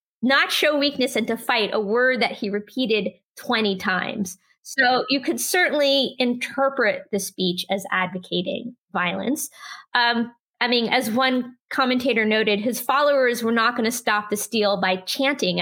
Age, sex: 20-39, female